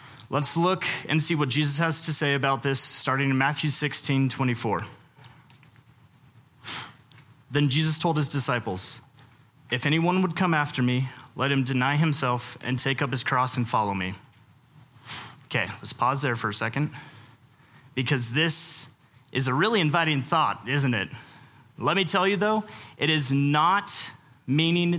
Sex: male